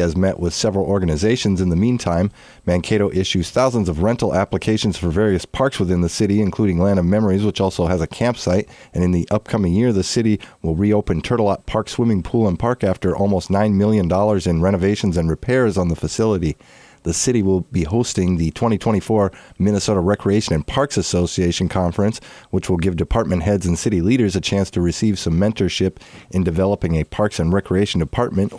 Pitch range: 90-105 Hz